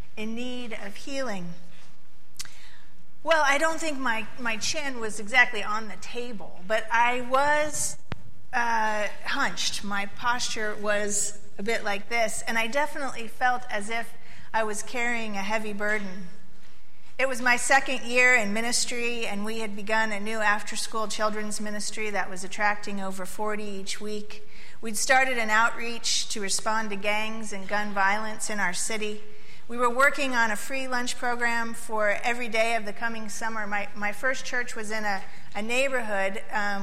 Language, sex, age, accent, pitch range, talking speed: English, female, 40-59, American, 200-235 Hz, 165 wpm